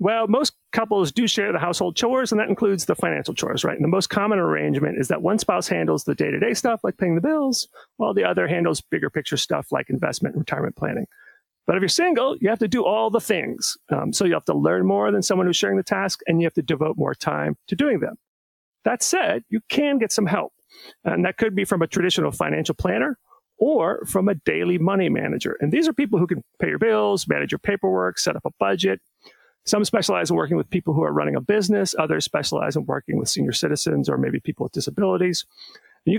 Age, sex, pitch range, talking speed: 40-59, male, 170-225 Hz, 230 wpm